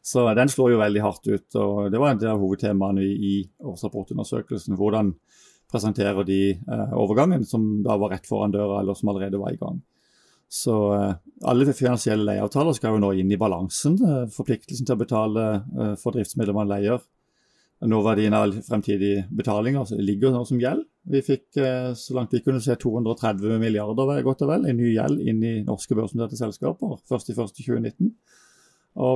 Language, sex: English, male